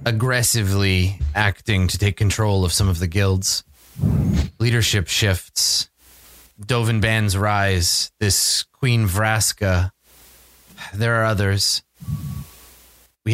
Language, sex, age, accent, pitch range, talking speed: English, male, 30-49, American, 75-110 Hz, 100 wpm